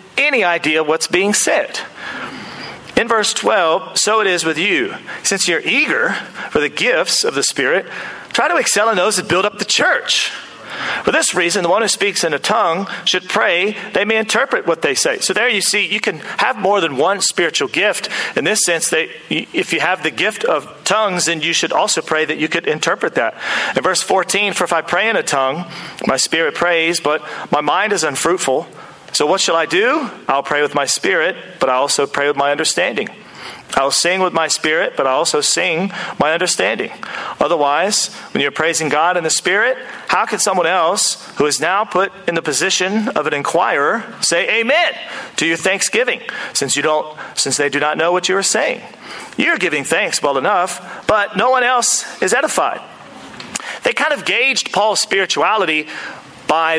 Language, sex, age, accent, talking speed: English, male, 40-59, American, 195 wpm